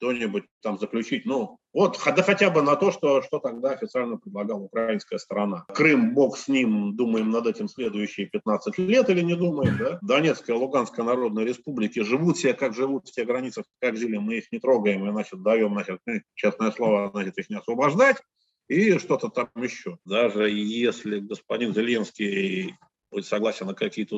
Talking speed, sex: 170 wpm, male